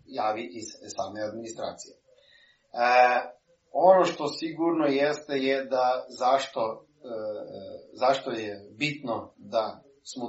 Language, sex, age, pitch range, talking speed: Croatian, male, 30-49, 120-140 Hz, 110 wpm